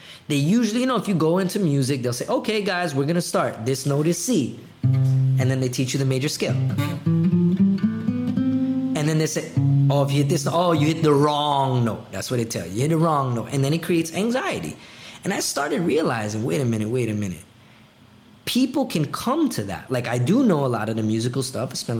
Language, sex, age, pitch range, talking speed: English, male, 20-39, 125-180 Hz, 235 wpm